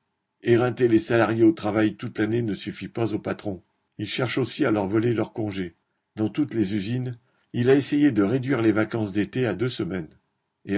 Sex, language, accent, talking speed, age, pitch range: male, French, French, 200 wpm, 50-69, 105-125 Hz